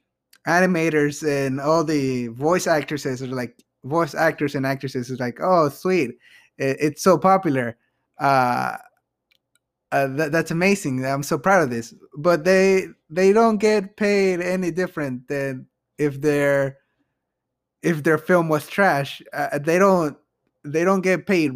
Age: 20-39